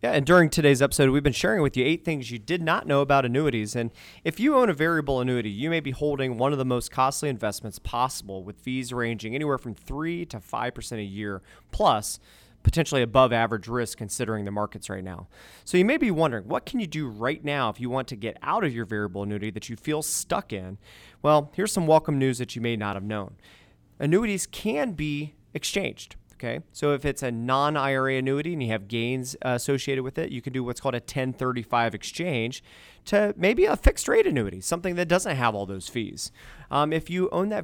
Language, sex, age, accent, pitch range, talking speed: English, male, 30-49, American, 115-155 Hz, 220 wpm